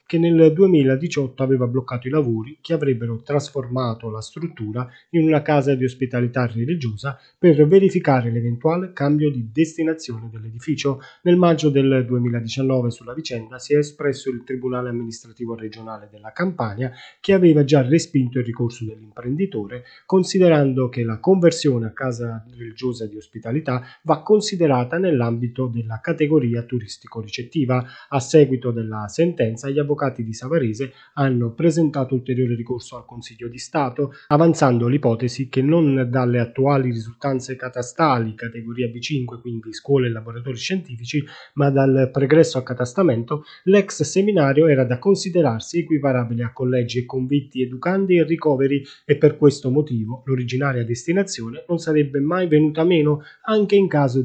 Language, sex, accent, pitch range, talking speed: Italian, male, native, 120-155 Hz, 140 wpm